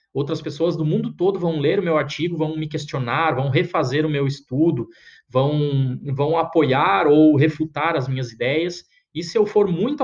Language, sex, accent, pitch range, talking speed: Portuguese, male, Brazilian, 140-175 Hz, 185 wpm